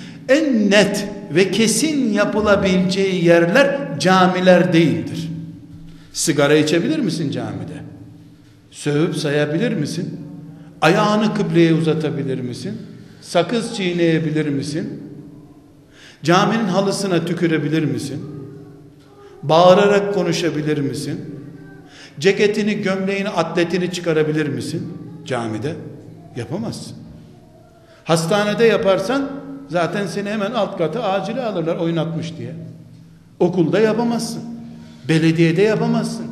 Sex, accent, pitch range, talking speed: male, native, 150-220 Hz, 85 wpm